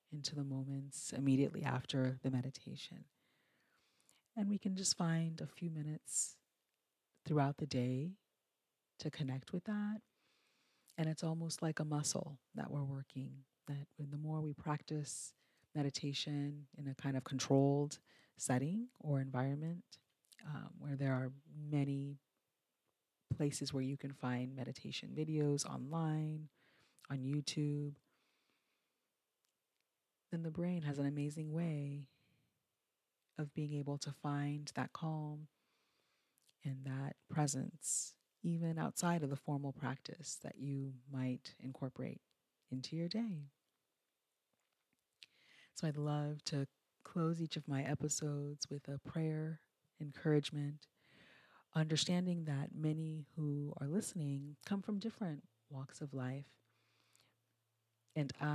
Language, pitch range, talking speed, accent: English, 135-155 Hz, 120 wpm, American